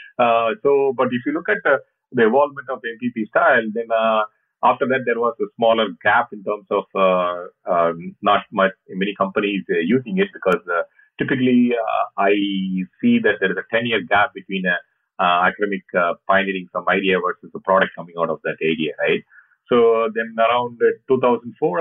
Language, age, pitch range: English, 40-59, 95-140 Hz